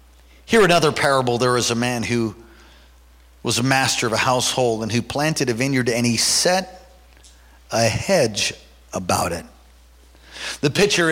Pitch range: 110-155 Hz